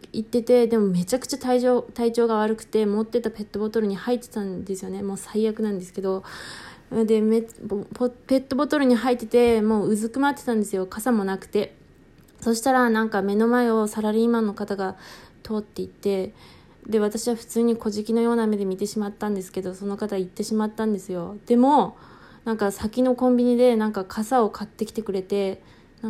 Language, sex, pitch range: Japanese, female, 195-225 Hz